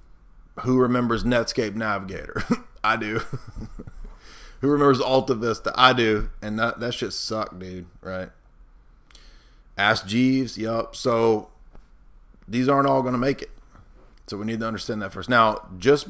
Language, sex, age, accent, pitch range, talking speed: English, male, 30-49, American, 100-125 Hz, 140 wpm